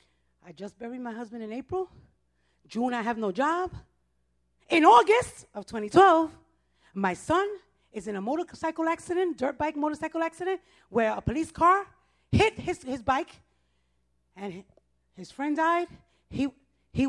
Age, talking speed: 30-49, 145 wpm